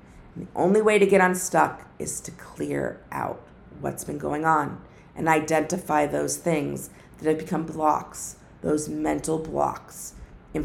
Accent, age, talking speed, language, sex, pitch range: American, 50-69, 145 wpm, English, female, 155-190 Hz